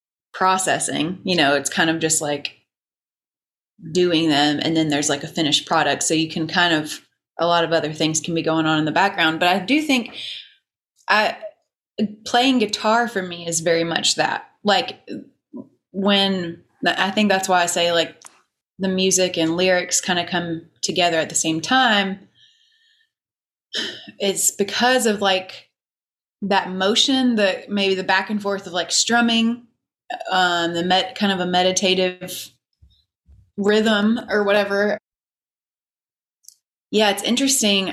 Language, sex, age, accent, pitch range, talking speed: English, female, 20-39, American, 165-205 Hz, 150 wpm